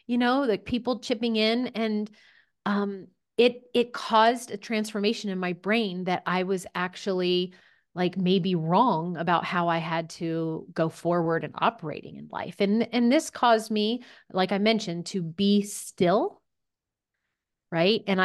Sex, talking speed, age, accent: female, 155 wpm, 30-49, American